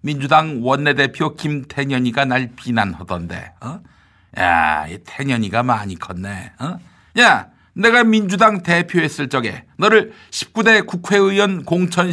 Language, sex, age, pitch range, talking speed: English, male, 60-79, 120-180 Hz, 100 wpm